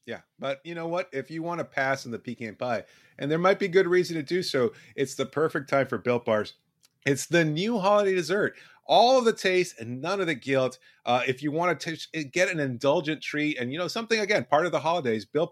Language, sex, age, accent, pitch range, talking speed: English, male, 30-49, American, 130-180 Hz, 250 wpm